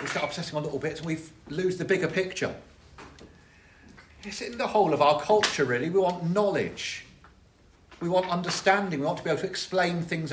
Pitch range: 125-180 Hz